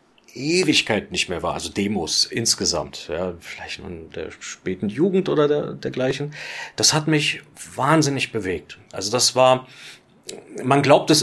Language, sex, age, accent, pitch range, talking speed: German, male, 40-59, German, 105-135 Hz, 150 wpm